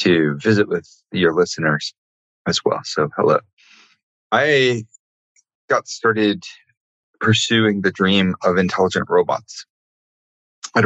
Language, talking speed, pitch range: English, 105 wpm, 90-115 Hz